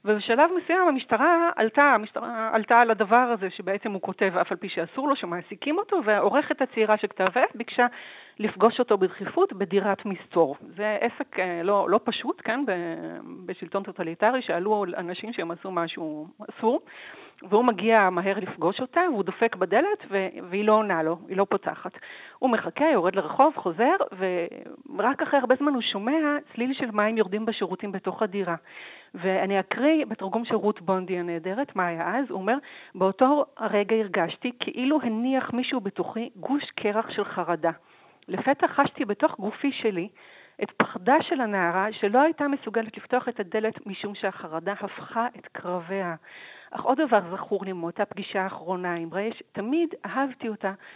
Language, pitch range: Hebrew, 190-255 Hz